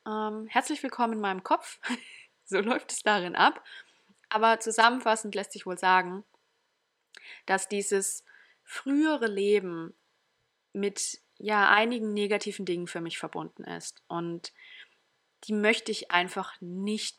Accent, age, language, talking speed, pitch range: German, 20-39, German, 120 wpm, 180-225 Hz